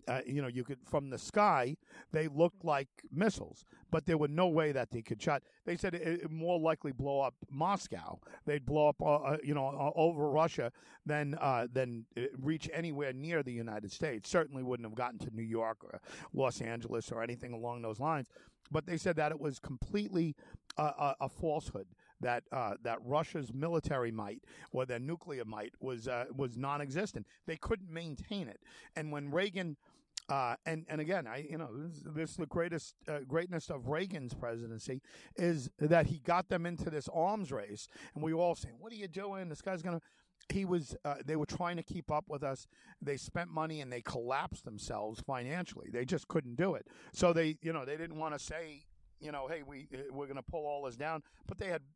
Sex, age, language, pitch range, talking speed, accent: male, 50-69, English, 135-170 Hz, 210 wpm, American